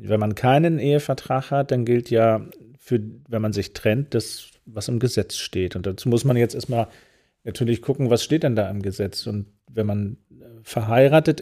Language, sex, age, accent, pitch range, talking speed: German, male, 40-59, German, 110-125 Hz, 190 wpm